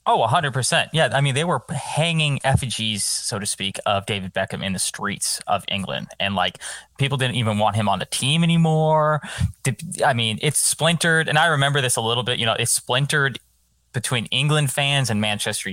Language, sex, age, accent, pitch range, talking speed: English, male, 20-39, American, 115-155 Hz, 195 wpm